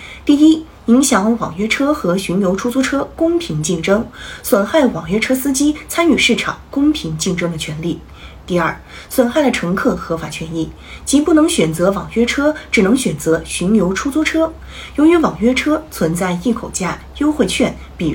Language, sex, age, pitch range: Chinese, female, 30-49, 175-265 Hz